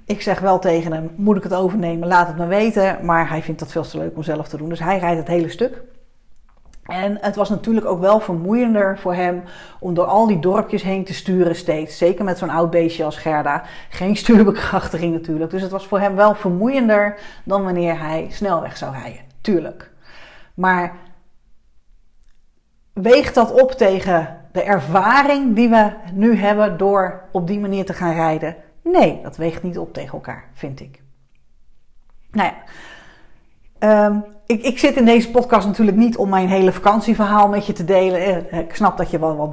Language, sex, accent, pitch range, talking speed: Dutch, female, Dutch, 170-210 Hz, 185 wpm